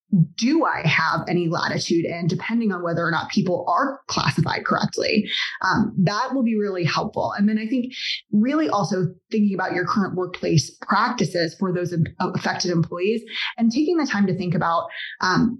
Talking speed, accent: 175 wpm, American